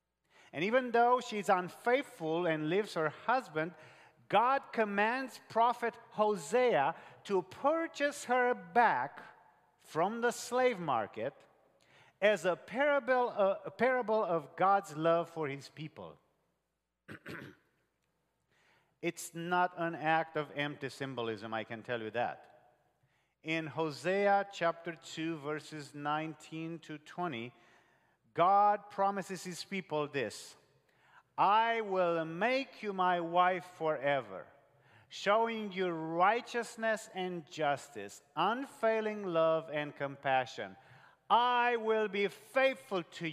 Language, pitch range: English, 150-220 Hz